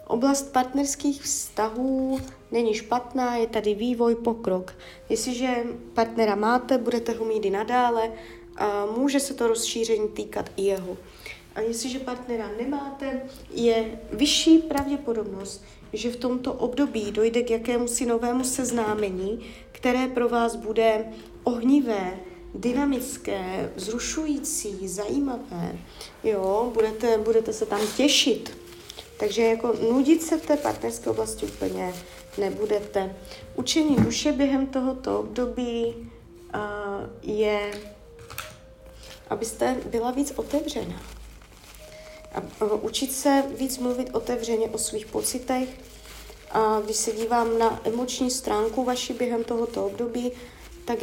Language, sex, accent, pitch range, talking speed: Czech, female, native, 210-255 Hz, 115 wpm